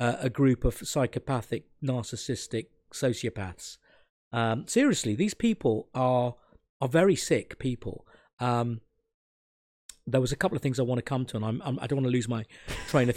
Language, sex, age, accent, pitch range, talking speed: English, male, 40-59, British, 120-165 Hz, 175 wpm